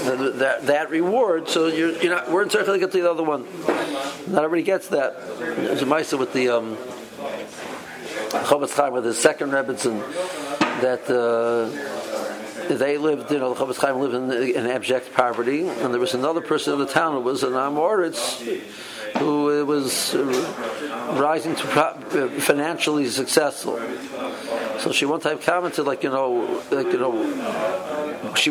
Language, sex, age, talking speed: English, male, 60-79, 160 wpm